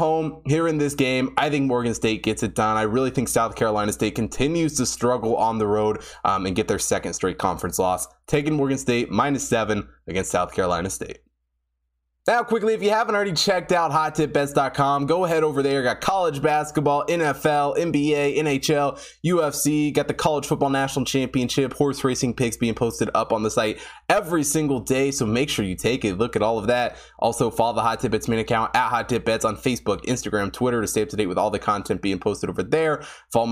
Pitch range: 105-140 Hz